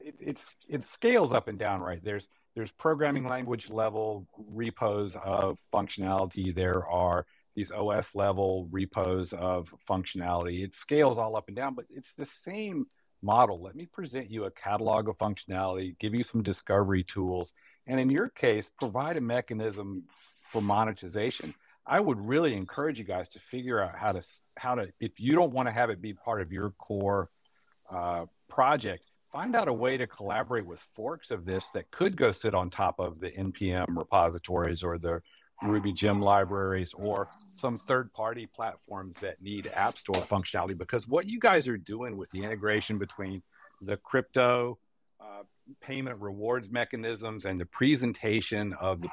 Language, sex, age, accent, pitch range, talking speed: English, male, 50-69, American, 95-115 Hz, 170 wpm